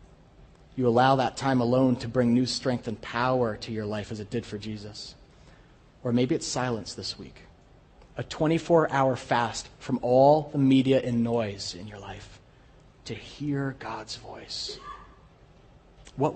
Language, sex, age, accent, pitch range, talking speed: English, male, 30-49, American, 110-130 Hz, 155 wpm